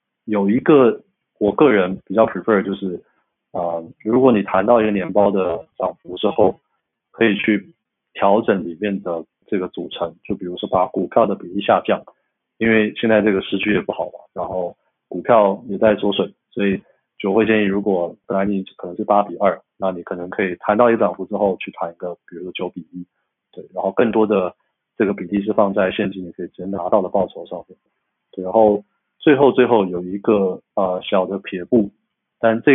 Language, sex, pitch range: Chinese, male, 95-105 Hz